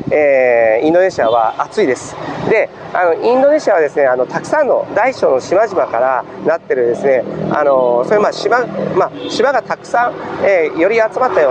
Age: 40-59